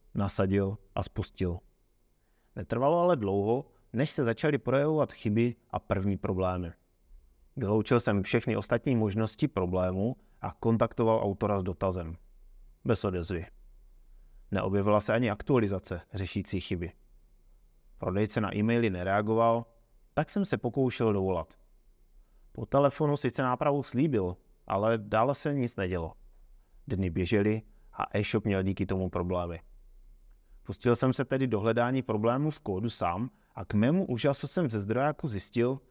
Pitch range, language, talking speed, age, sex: 95-120 Hz, Czech, 130 wpm, 30-49, male